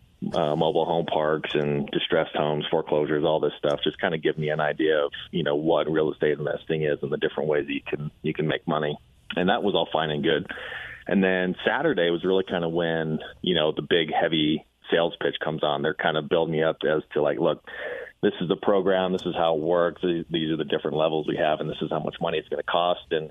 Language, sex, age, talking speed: English, male, 40-59, 255 wpm